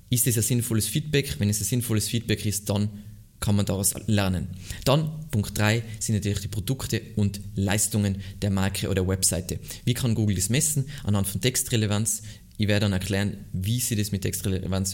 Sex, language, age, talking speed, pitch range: male, German, 20-39, 190 wpm, 100-115 Hz